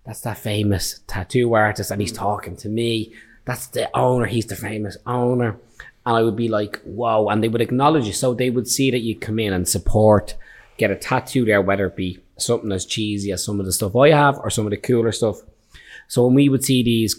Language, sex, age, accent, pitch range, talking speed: English, male, 20-39, Irish, 100-115 Hz, 235 wpm